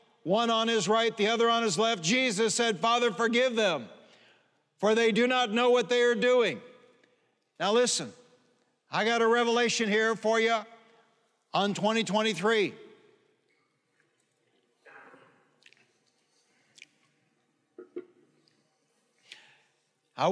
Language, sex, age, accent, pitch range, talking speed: English, male, 60-79, American, 205-230 Hz, 105 wpm